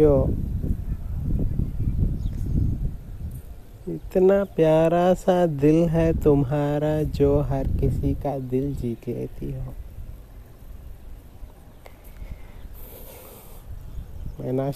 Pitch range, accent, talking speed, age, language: 95-140 Hz, Indian, 65 wpm, 30-49, English